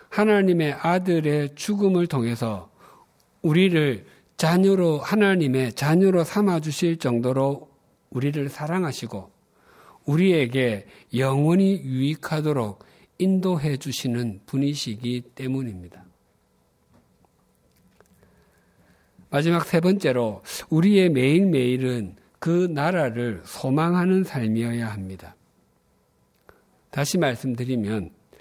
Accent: native